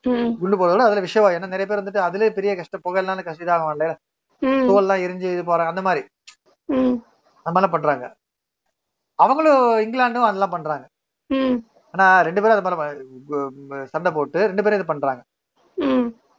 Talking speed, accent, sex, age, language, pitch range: 35 wpm, native, male, 30-49, Tamil, 175-230 Hz